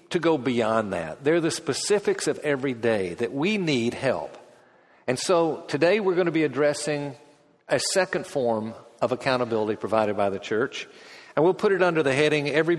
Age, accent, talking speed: 50-69, American, 185 wpm